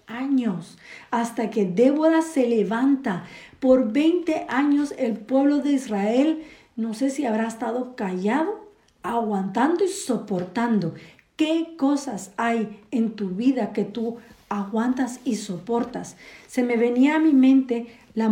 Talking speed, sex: 130 wpm, female